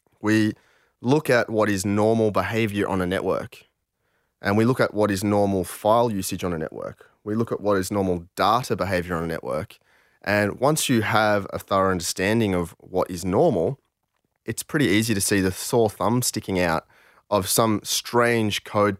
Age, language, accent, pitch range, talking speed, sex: 20-39, English, Australian, 95-110 Hz, 185 wpm, male